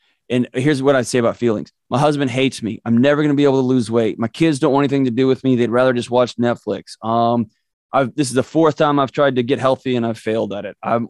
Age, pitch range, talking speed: 20-39, 120-145 Hz, 275 wpm